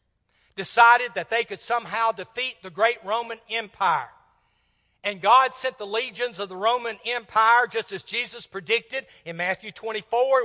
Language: English